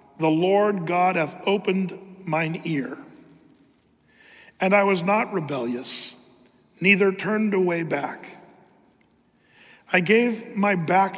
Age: 50-69